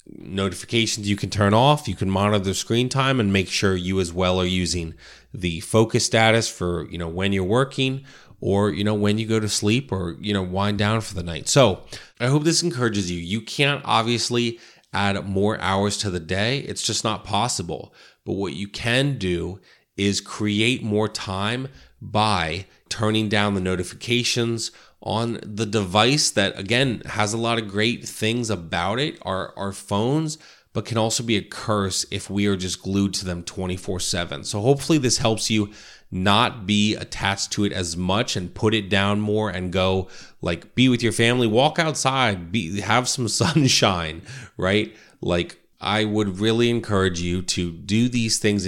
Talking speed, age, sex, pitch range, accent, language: 185 wpm, 30-49, male, 95-115 Hz, American, English